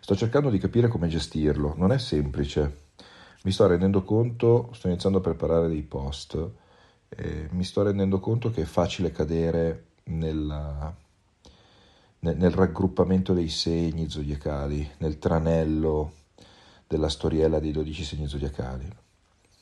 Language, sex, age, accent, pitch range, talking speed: Italian, male, 40-59, native, 75-95 Hz, 130 wpm